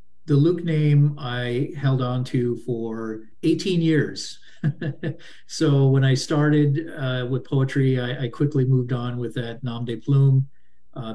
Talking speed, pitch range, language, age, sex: 150 wpm, 120-145 Hz, English, 40-59, male